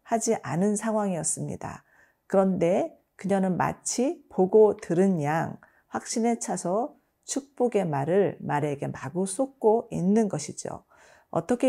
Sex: female